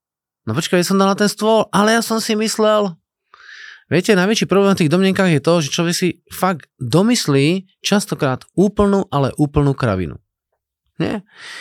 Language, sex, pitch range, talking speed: Slovak, male, 120-190 Hz, 165 wpm